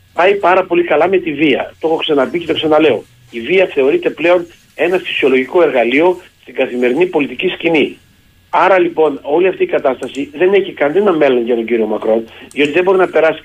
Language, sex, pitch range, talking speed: Greek, male, 120-185 Hz, 190 wpm